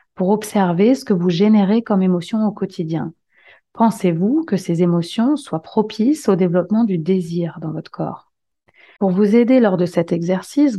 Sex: female